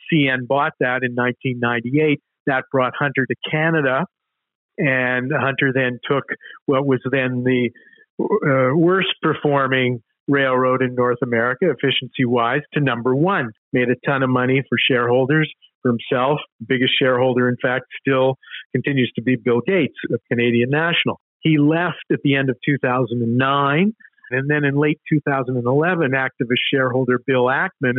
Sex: male